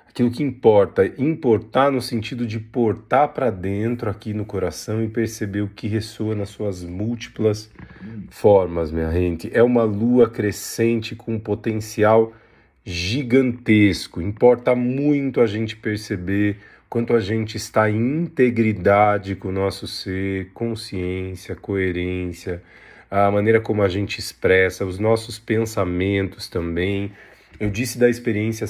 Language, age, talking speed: Portuguese, 40-59, 135 wpm